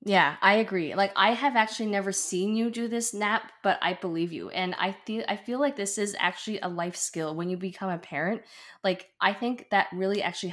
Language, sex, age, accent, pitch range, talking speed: English, female, 20-39, American, 170-200 Hz, 235 wpm